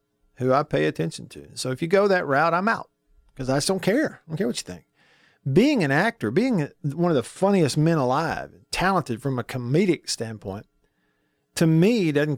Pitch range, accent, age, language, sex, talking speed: 115-185 Hz, American, 50-69, English, male, 205 wpm